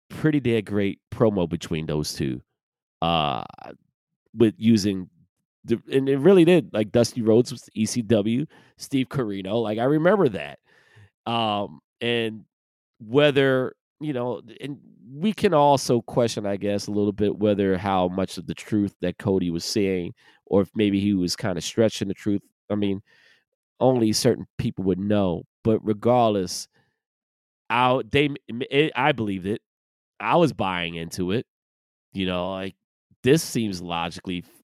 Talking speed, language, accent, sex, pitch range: 145 wpm, English, American, male, 95-125 Hz